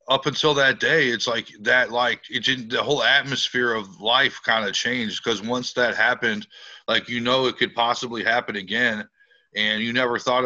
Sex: male